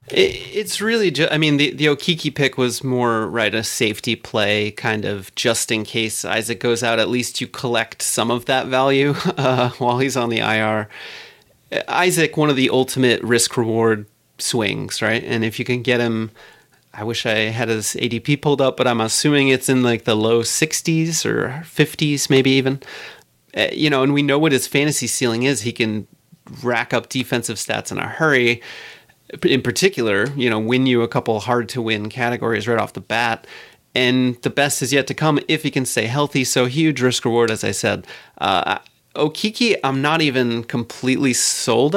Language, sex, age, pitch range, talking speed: English, male, 30-49, 115-140 Hz, 190 wpm